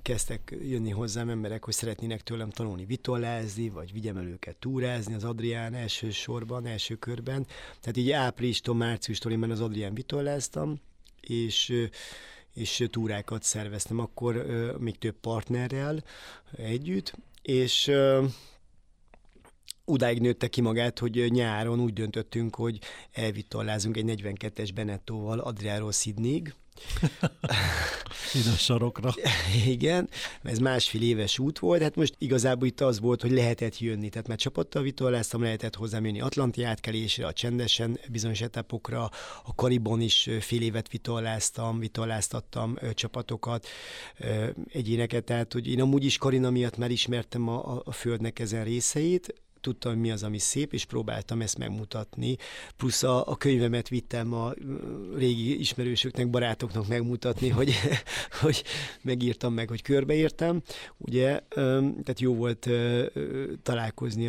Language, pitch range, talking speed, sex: Hungarian, 110-125 Hz, 125 wpm, male